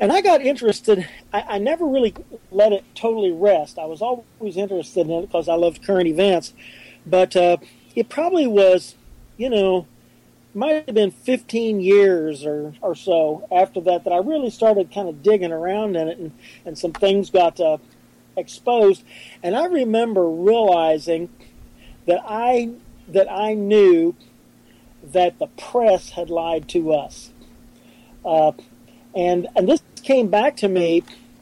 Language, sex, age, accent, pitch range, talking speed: English, male, 40-59, American, 175-215 Hz, 155 wpm